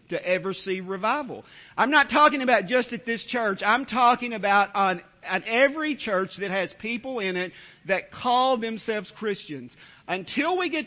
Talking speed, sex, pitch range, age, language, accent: 170 wpm, male, 170-250 Hz, 50-69, English, American